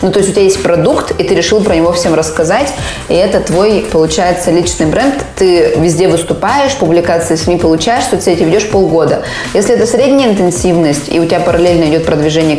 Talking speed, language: 185 wpm, Russian